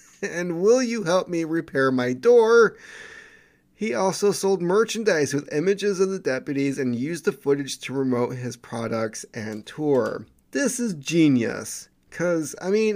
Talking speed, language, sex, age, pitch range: 155 wpm, English, male, 30-49, 125-185 Hz